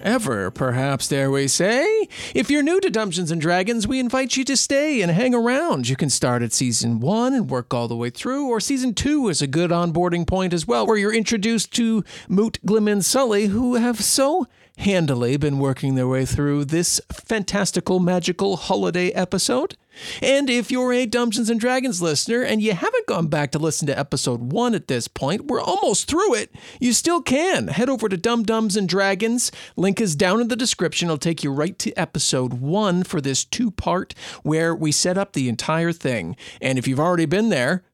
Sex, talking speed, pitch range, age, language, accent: male, 200 wpm, 150-225 Hz, 40-59, English, American